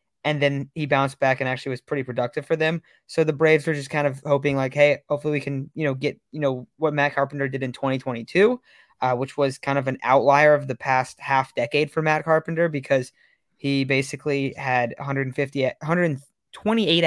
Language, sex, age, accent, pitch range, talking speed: English, male, 20-39, American, 130-155 Hz, 200 wpm